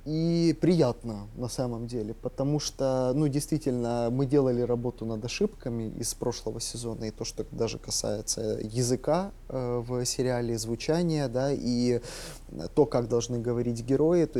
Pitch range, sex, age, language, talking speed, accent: 120-150 Hz, male, 20-39, Russian, 145 wpm, native